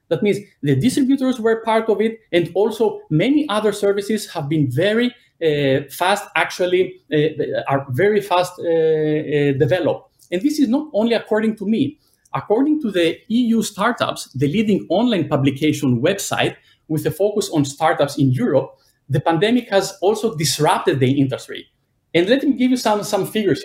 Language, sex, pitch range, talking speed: Czech, male, 150-220 Hz, 170 wpm